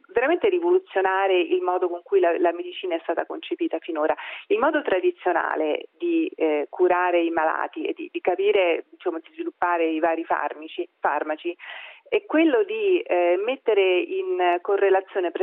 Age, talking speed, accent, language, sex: 40-59, 160 wpm, native, Italian, female